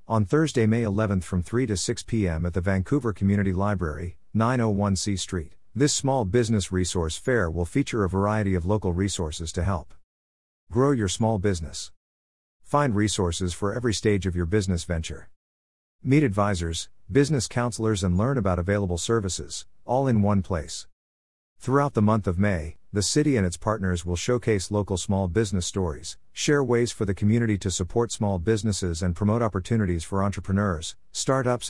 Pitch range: 90-110 Hz